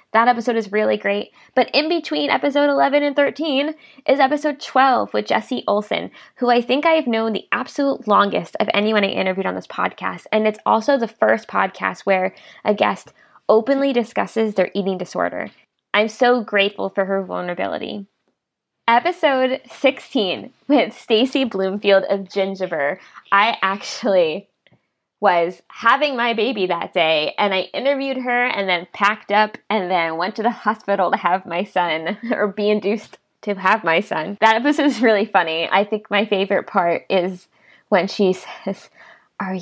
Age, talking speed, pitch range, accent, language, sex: 20-39, 165 wpm, 190-245 Hz, American, English, female